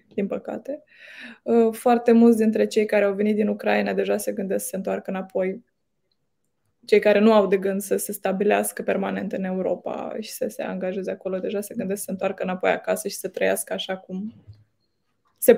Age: 20-39